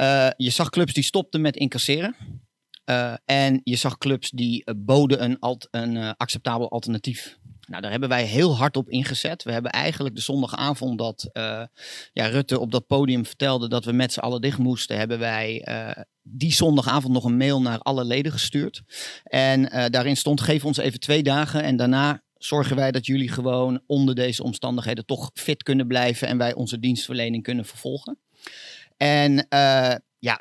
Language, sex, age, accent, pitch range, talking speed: Dutch, male, 40-59, Dutch, 120-135 Hz, 180 wpm